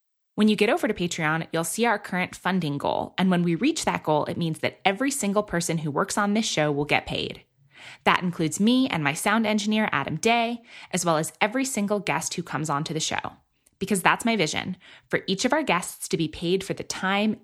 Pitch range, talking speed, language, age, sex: 155-200 Hz, 230 wpm, English, 20-39, female